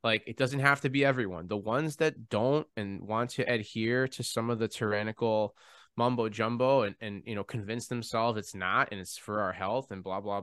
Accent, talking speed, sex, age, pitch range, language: American, 220 wpm, male, 20-39, 100-120 Hz, English